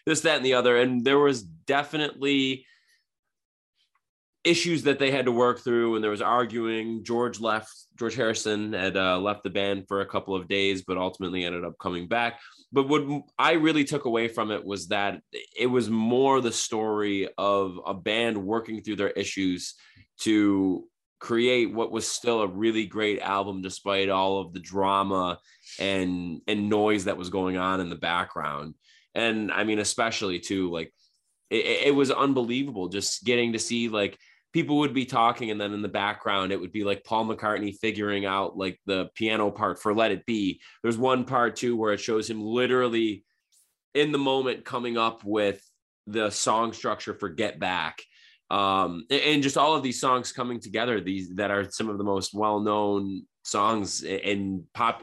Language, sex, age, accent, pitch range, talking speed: English, male, 20-39, American, 100-120 Hz, 180 wpm